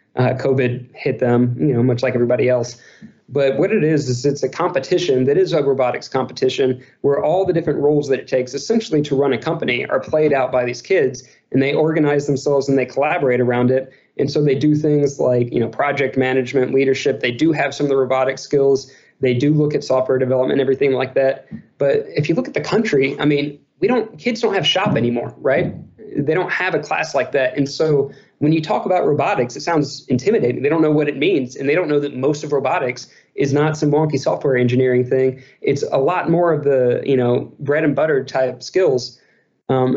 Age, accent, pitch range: 20-39, American, 130-150 Hz